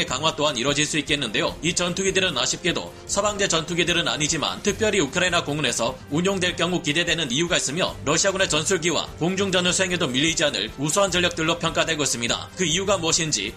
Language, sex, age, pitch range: Korean, male, 30-49, 145-185 Hz